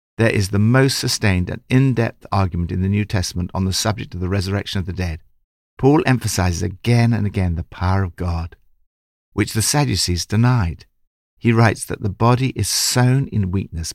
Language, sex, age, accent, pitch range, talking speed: English, male, 60-79, British, 85-115 Hz, 185 wpm